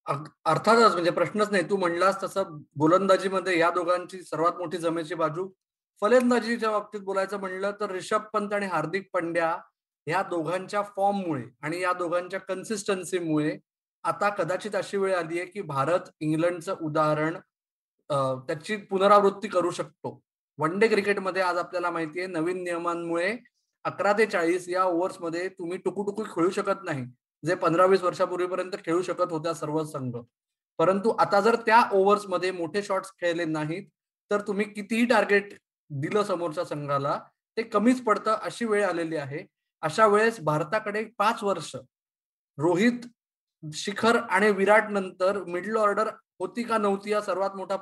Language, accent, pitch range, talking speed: Marathi, native, 170-205 Hz, 105 wpm